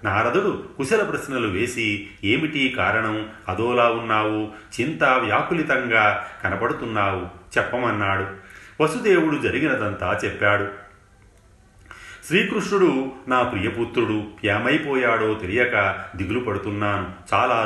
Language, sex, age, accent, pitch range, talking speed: Telugu, male, 40-59, native, 95-115 Hz, 80 wpm